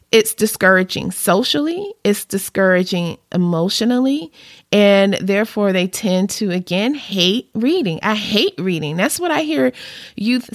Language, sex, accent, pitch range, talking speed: English, female, American, 180-235 Hz, 125 wpm